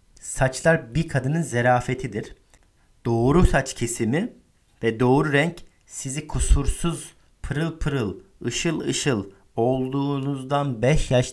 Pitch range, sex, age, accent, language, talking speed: 110-140 Hz, male, 50-69, native, Turkish, 100 wpm